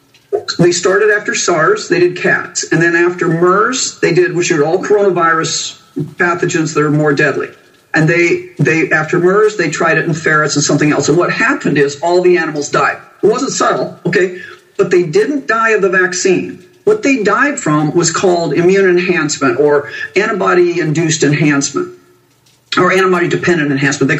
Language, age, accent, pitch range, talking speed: English, 50-69, American, 155-205 Hz, 170 wpm